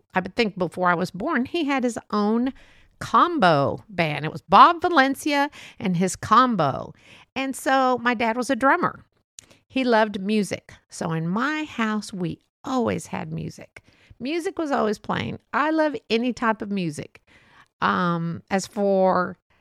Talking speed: 155 wpm